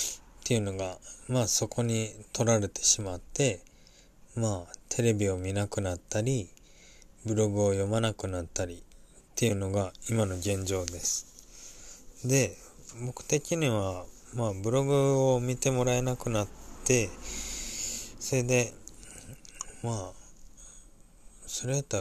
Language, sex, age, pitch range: Japanese, male, 20-39, 95-120 Hz